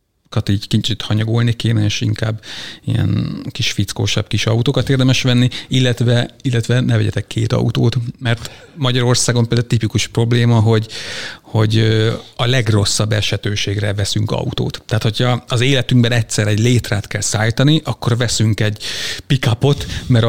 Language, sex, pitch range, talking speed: Hungarian, male, 110-130 Hz, 135 wpm